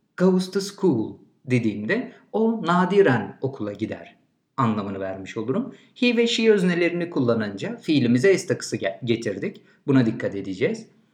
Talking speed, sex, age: 125 wpm, male, 50-69